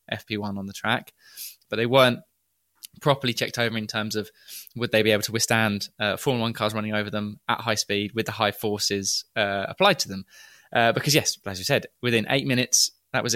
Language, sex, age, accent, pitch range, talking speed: English, male, 20-39, British, 105-130 Hz, 215 wpm